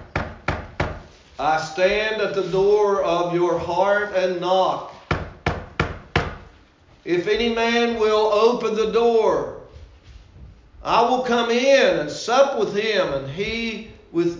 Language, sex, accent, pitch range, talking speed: English, male, American, 160-215 Hz, 115 wpm